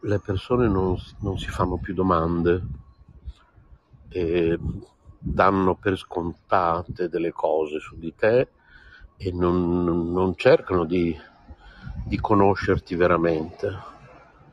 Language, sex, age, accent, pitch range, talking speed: Italian, male, 60-79, native, 90-115 Hz, 105 wpm